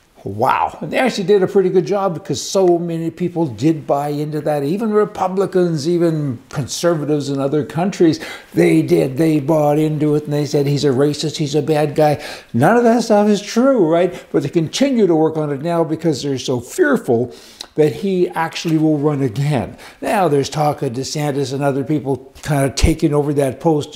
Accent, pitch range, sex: American, 150-190 Hz, male